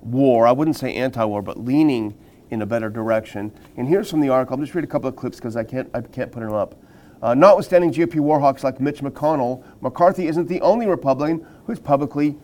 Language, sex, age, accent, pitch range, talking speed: English, male, 40-59, American, 125-155 Hz, 220 wpm